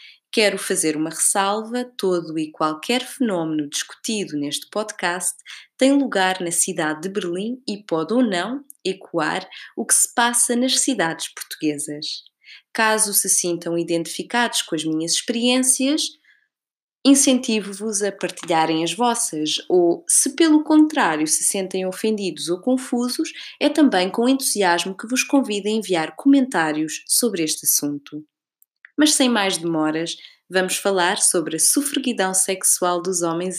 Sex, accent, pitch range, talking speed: female, Brazilian, 165-255 Hz, 135 wpm